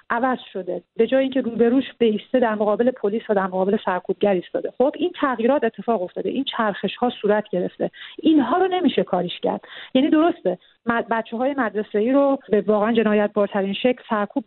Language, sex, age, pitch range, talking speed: Persian, female, 40-59, 205-245 Hz, 185 wpm